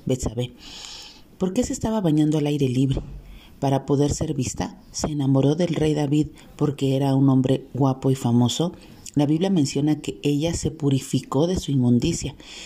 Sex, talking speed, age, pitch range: female, 165 wpm, 40-59, 130-160 Hz